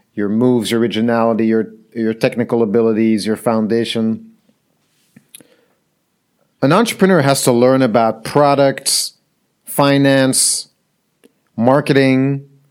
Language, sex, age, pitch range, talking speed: English, male, 40-59, 125-160 Hz, 90 wpm